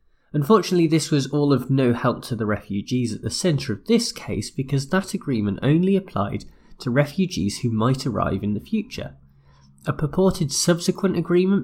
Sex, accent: male, British